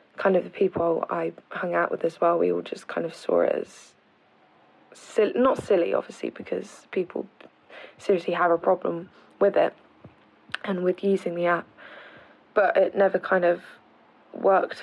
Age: 20-39